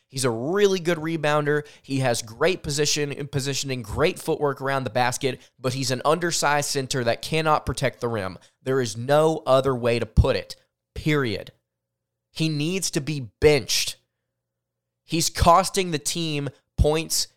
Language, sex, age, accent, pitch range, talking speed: English, male, 20-39, American, 120-165 Hz, 155 wpm